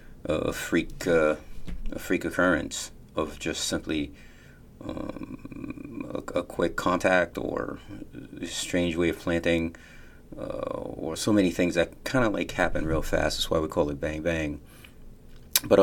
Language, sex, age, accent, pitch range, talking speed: English, male, 40-59, American, 80-105 Hz, 150 wpm